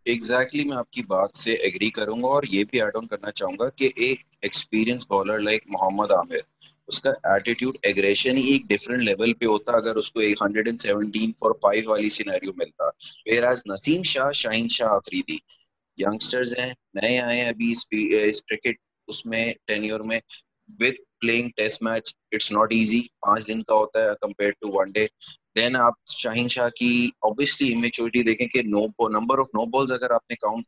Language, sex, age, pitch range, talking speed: Urdu, male, 30-49, 110-135 Hz, 40 wpm